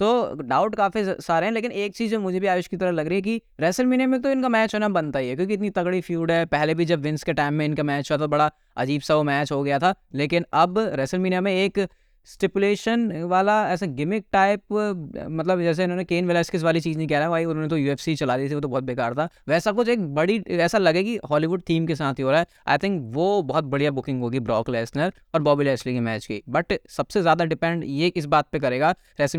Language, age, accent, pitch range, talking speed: Hindi, 20-39, native, 150-200 Hz, 250 wpm